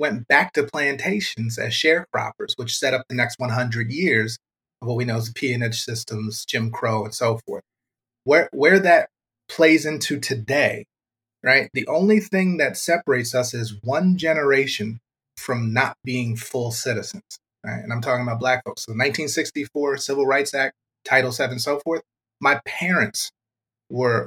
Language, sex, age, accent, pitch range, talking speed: English, male, 30-49, American, 115-155 Hz, 165 wpm